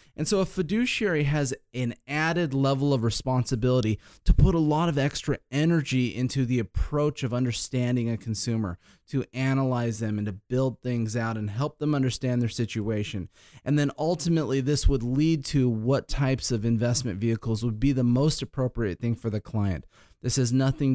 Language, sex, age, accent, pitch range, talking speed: English, male, 30-49, American, 105-135 Hz, 180 wpm